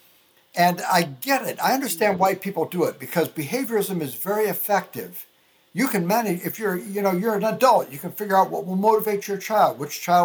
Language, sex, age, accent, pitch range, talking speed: English, male, 60-79, American, 150-200 Hz, 210 wpm